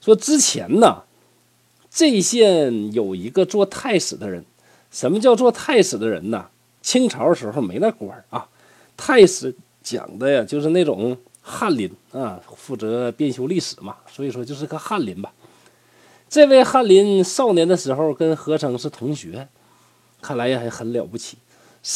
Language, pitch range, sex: Chinese, 125-205 Hz, male